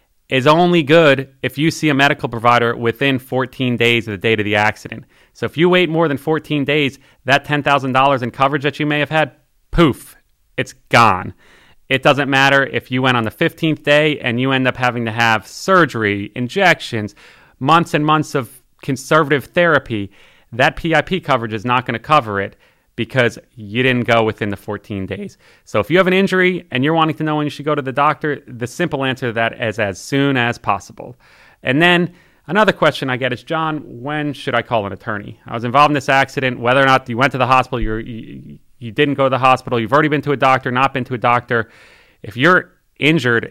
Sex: male